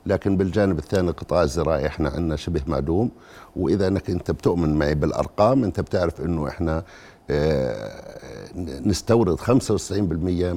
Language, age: Arabic, 60-79